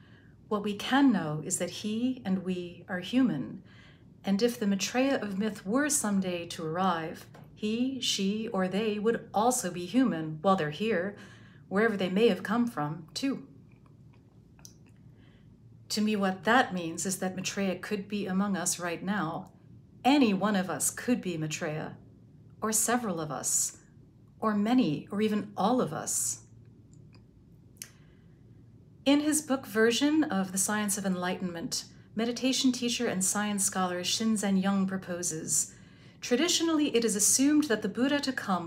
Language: English